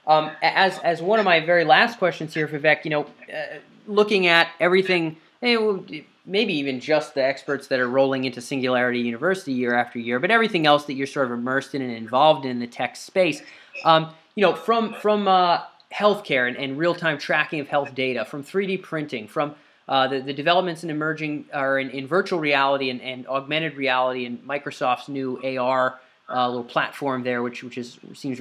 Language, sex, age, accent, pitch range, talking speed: English, male, 30-49, American, 135-190 Hz, 195 wpm